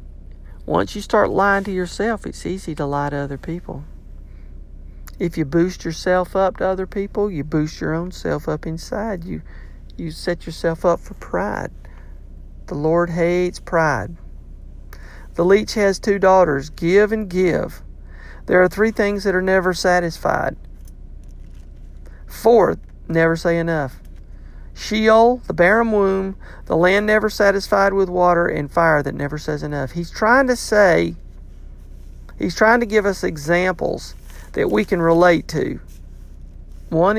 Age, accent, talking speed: 50-69, American, 145 wpm